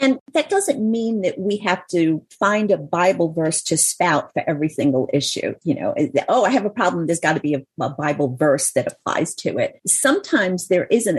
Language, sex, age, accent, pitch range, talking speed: English, female, 50-69, American, 170-220 Hz, 215 wpm